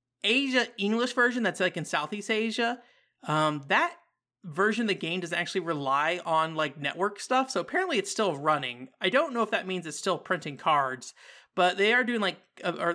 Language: English